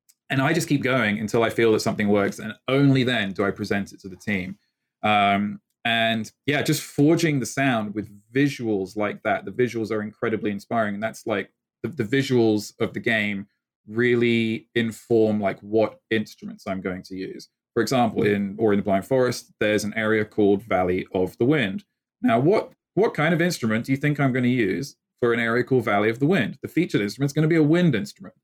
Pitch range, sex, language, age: 100-125 Hz, male, English, 20-39